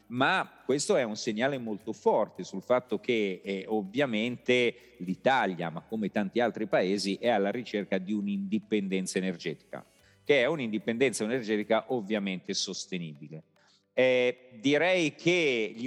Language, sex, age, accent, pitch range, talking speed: Italian, male, 40-59, native, 105-130 Hz, 130 wpm